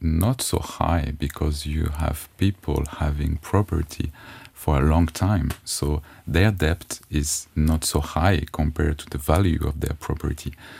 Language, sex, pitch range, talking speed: English, male, 75-95 Hz, 150 wpm